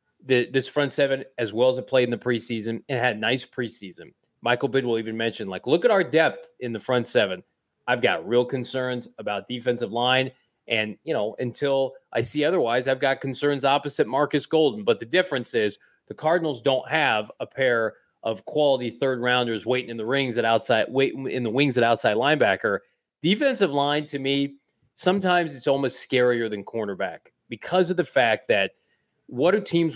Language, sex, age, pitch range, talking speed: English, male, 30-49, 120-155 Hz, 190 wpm